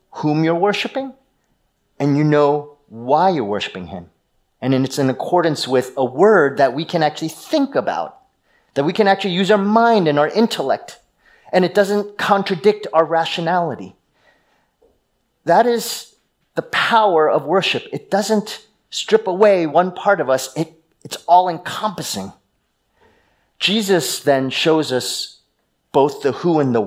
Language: English